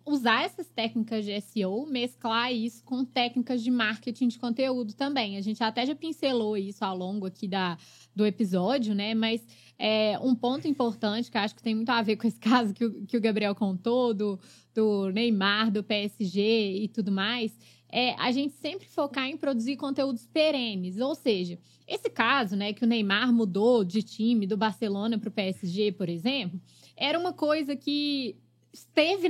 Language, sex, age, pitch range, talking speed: Portuguese, female, 20-39, 210-285 Hz, 180 wpm